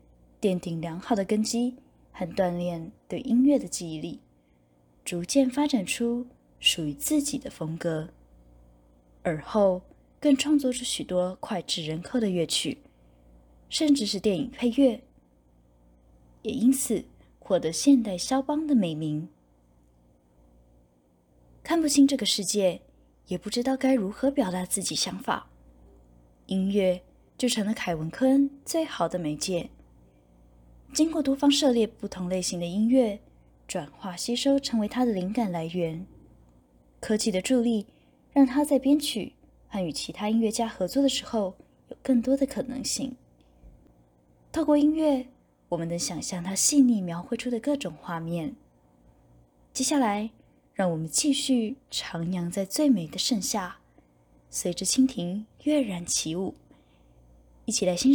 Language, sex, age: Chinese, female, 20-39